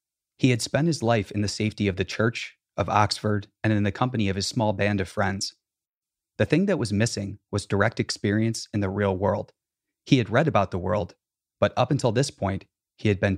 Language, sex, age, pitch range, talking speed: English, male, 30-49, 95-110 Hz, 220 wpm